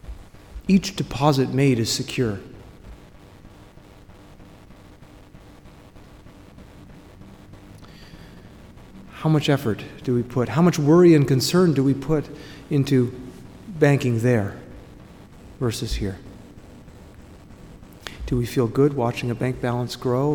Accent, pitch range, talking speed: American, 110-135 Hz, 95 wpm